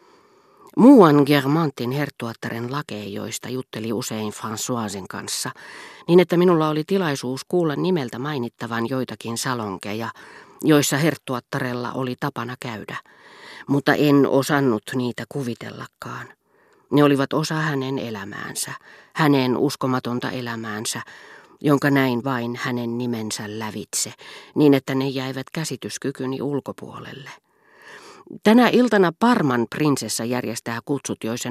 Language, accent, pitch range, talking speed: Finnish, native, 120-150 Hz, 105 wpm